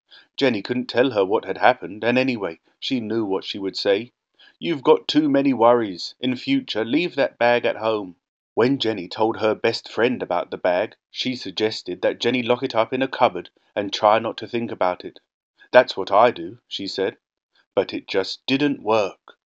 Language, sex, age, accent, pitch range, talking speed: English, male, 30-49, British, 105-130 Hz, 195 wpm